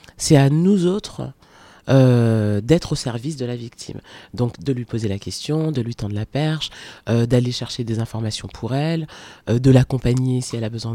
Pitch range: 125-155 Hz